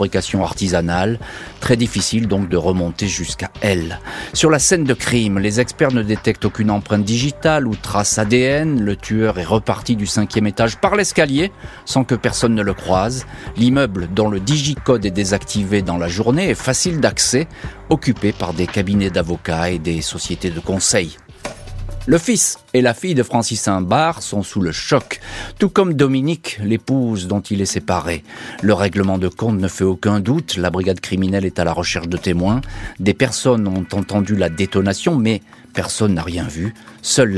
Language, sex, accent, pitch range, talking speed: French, male, French, 95-120 Hz, 175 wpm